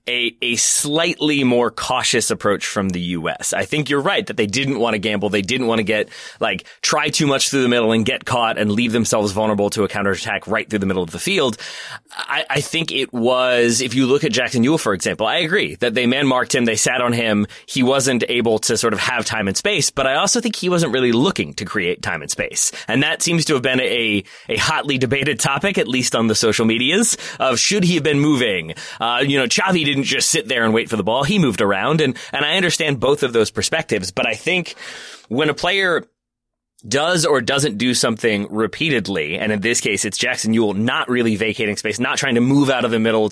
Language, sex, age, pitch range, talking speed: English, male, 20-39, 110-145 Hz, 240 wpm